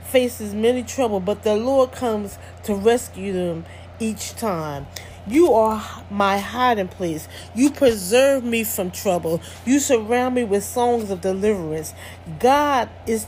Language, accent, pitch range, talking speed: English, American, 190-245 Hz, 140 wpm